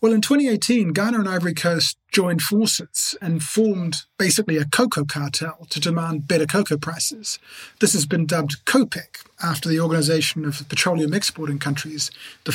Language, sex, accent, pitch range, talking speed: English, male, British, 155-200 Hz, 160 wpm